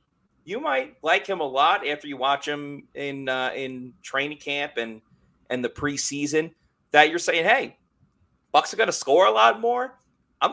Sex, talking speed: male, 180 wpm